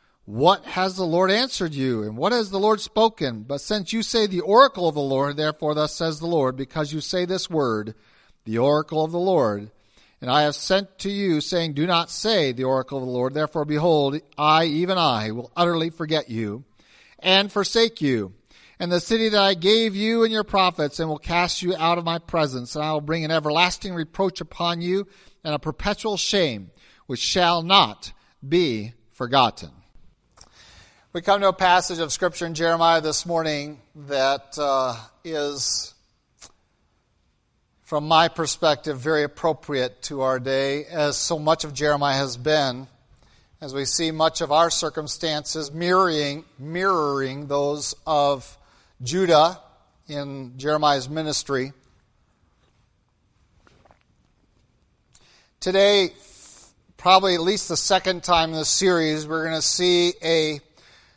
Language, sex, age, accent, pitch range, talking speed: English, male, 50-69, American, 140-180 Hz, 155 wpm